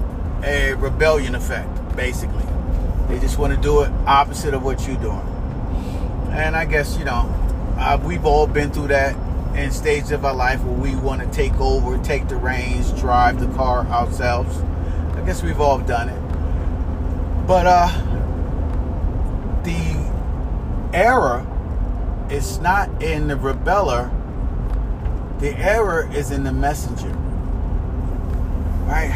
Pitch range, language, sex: 75-90 Hz, English, male